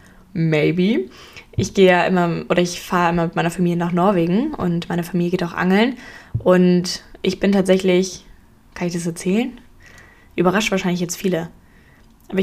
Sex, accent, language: female, German, German